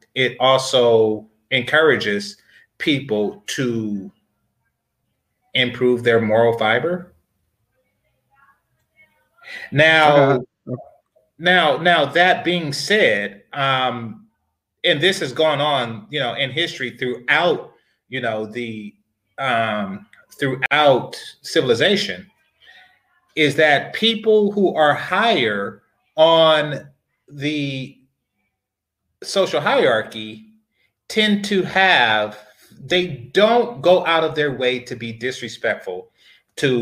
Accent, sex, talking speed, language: American, male, 90 wpm, English